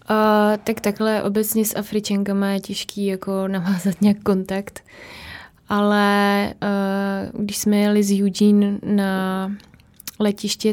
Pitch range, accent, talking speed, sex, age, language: 185-205 Hz, native, 115 wpm, female, 20-39, Czech